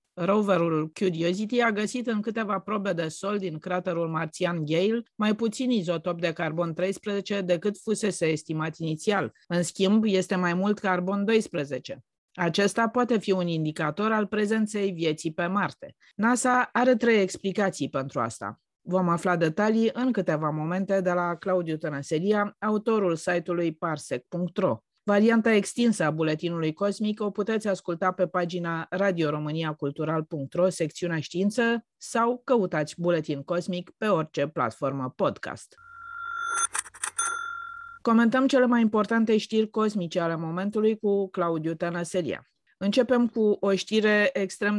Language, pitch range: Romanian, 170-215 Hz